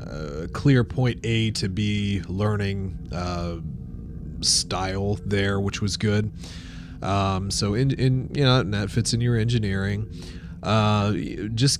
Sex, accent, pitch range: male, American, 95-125 Hz